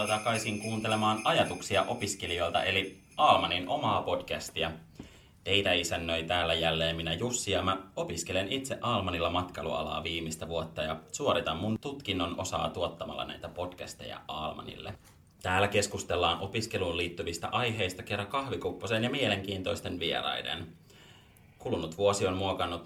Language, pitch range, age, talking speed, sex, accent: Finnish, 85-110 Hz, 30-49, 120 wpm, male, native